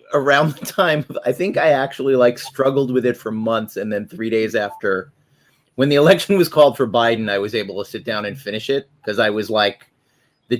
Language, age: English, 30-49